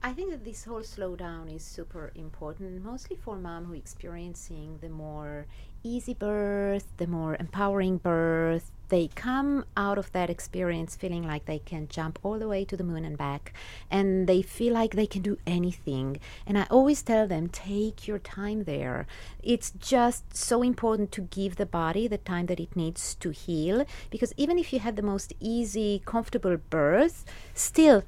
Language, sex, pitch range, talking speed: English, female, 175-230 Hz, 180 wpm